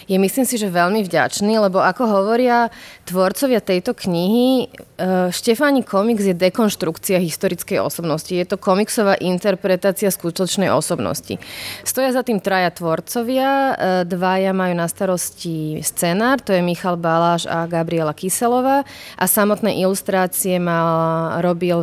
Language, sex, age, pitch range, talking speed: Slovak, female, 30-49, 175-205 Hz, 125 wpm